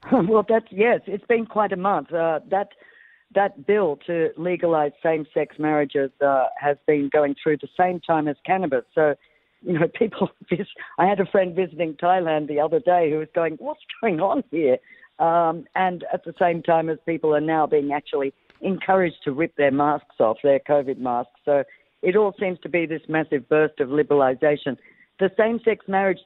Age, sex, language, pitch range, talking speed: 50-69, female, English, 140-175 Hz, 185 wpm